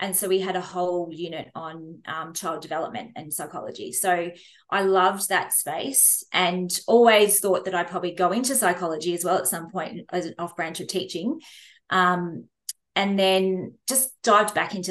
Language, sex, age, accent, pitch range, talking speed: English, female, 20-39, Australian, 175-195 Hz, 175 wpm